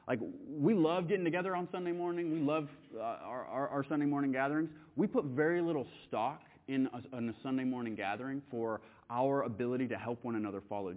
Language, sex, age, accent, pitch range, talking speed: English, male, 30-49, American, 125-155 Hz, 205 wpm